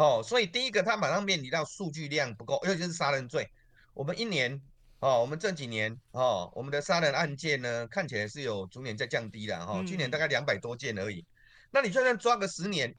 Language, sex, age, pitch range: Chinese, male, 30-49, 140-220 Hz